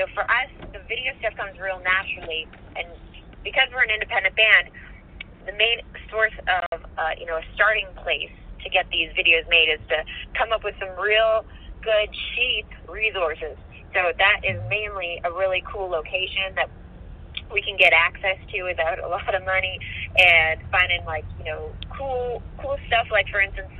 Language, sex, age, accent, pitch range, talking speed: English, female, 30-49, American, 150-195 Hz, 175 wpm